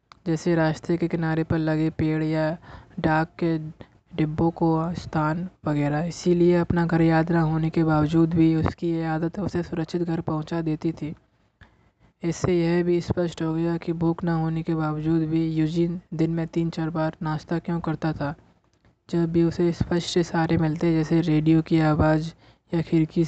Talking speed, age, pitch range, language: 170 wpm, 20-39, 160-170 Hz, Hindi